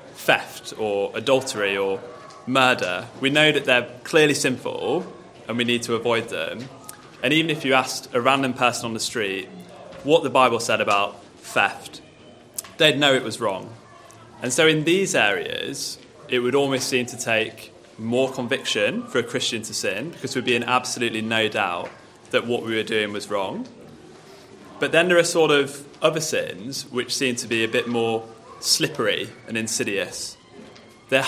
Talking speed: 175 wpm